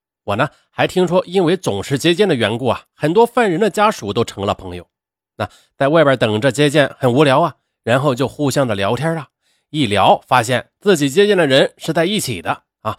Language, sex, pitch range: Chinese, male, 100-165 Hz